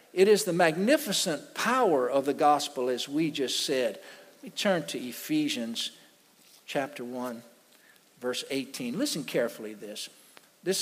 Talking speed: 145 wpm